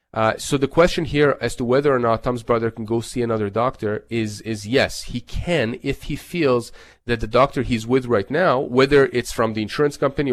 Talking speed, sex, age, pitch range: 220 wpm, male, 30-49, 115-140 Hz